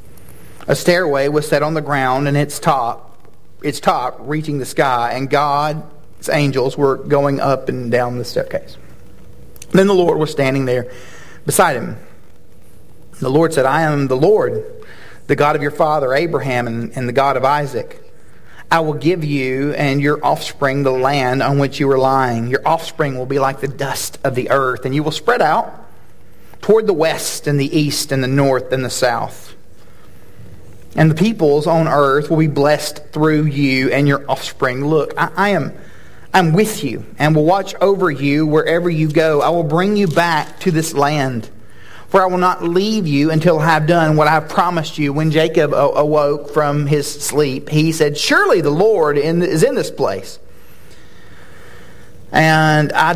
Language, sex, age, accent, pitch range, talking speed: English, male, 40-59, American, 135-160 Hz, 180 wpm